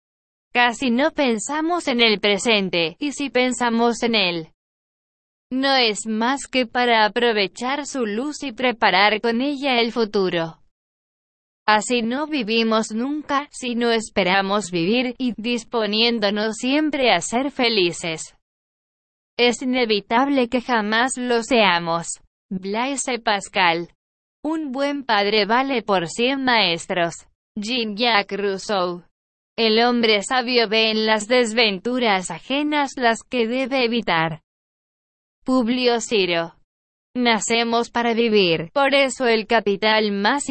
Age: 20-39